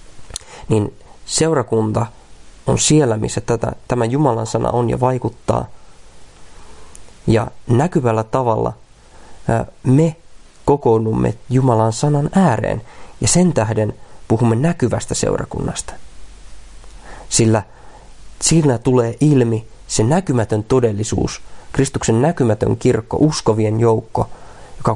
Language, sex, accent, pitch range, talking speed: Finnish, male, native, 110-135 Hz, 90 wpm